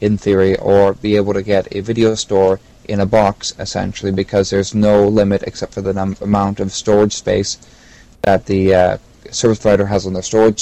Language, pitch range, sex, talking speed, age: English, 95-110 Hz, male, 200 wpm, 20-39